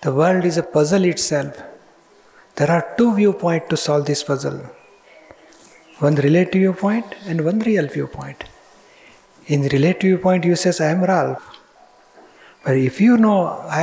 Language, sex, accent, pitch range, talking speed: Gujarati, male, native, 155-200 Hz, 150 wpm